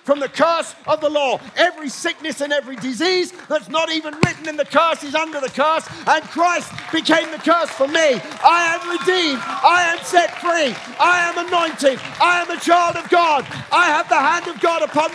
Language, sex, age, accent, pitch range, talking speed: English, male, 40-59, British, 290-345 Hz, 205 wpm